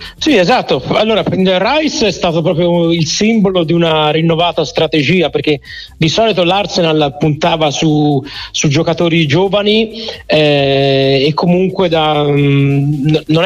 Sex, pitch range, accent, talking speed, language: male, 150-170 Hz, native, 130 wpm, Italian